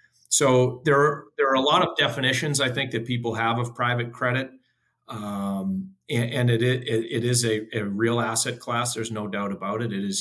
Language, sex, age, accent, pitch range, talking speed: English, male, 40-59, American, 110-125 Hz, 210 wpm